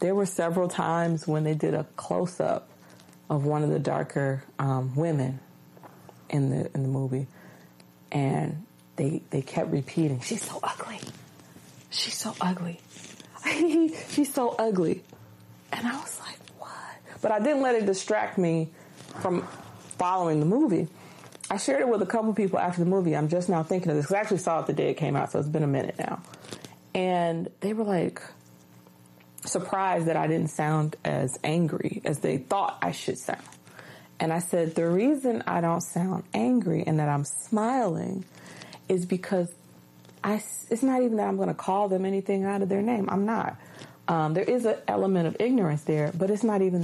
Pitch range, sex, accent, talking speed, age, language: 150-195 Hz, female, American, 185 wpm, 30-49, English